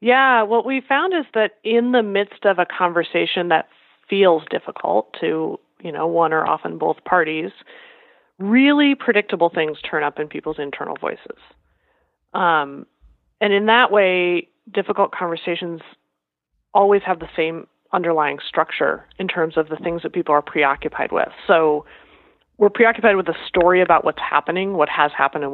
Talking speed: 160 wpm